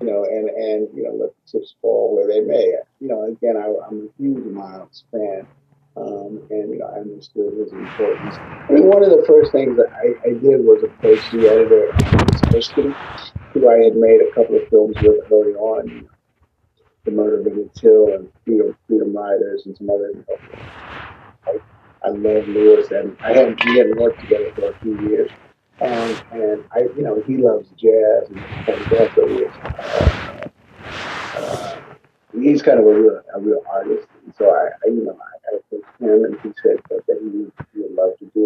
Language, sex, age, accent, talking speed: English, male, 40-59, American, 200 wpm